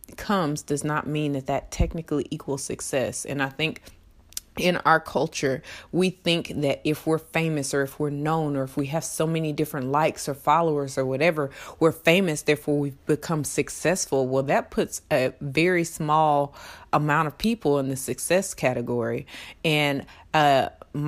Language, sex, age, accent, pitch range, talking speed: English, female, 30-49, American, 130-165 Hz, 165 wpm